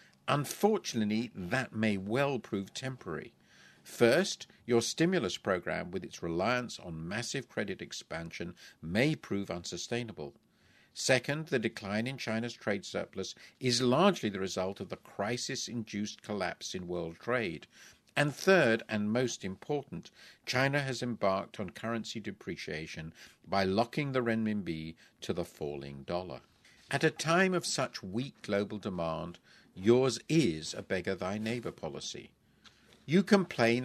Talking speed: 130 wpm